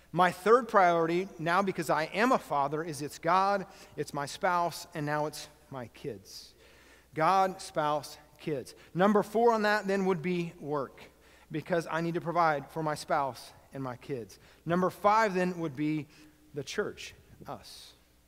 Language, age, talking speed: English, 40-59, 165 wpm